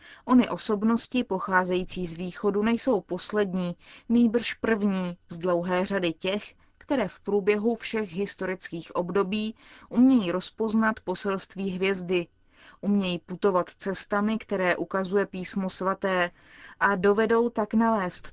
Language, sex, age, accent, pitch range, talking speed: Czech, female, 20-39, native, 185-220 Hz, 110 wpm